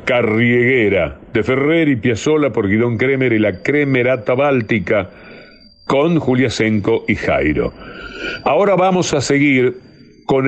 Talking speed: 125 wpm